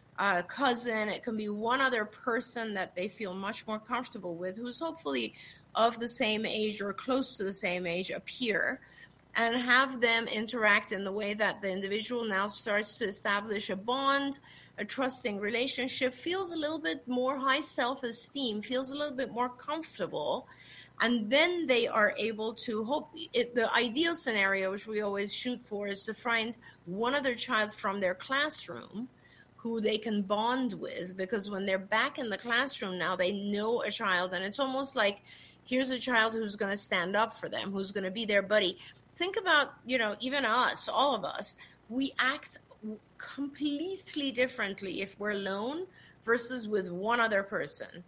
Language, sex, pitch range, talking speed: English, female, 200-255 Hz, 175 wpm